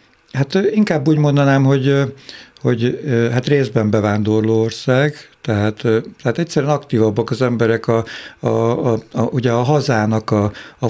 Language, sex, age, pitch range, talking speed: Hungarian, male, 60-79, 100-120 Hz, 145 wpm